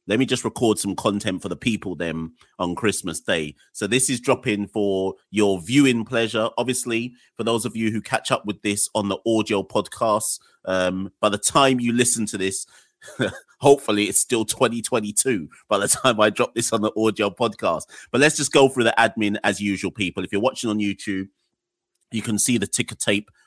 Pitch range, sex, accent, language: 100-130 Hz, male, British, English